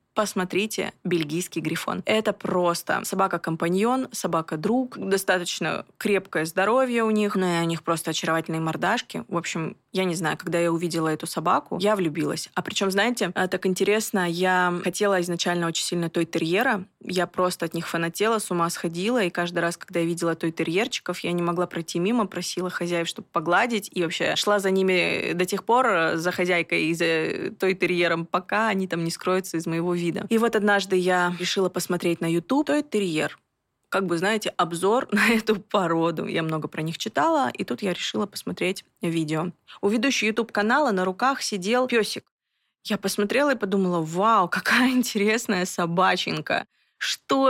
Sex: female